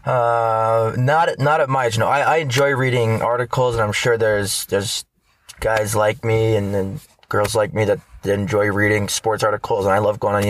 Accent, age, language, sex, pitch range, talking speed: American, 20-39, English, male, 100-120 Hz, 200 wpm